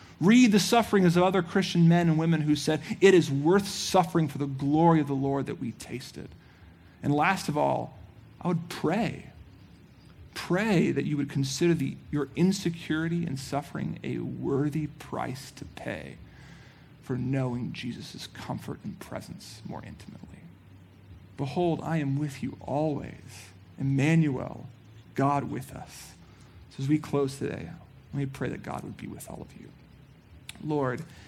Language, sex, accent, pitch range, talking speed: English, male, American, 130-155 Hz, 155 wpm